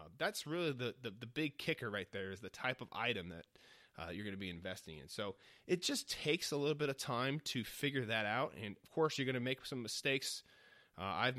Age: 30-49